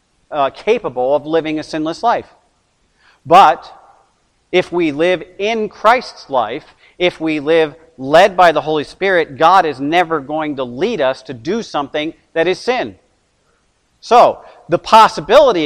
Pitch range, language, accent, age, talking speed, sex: 155-205 Hz, English, American, 40-59, 145 wpm, male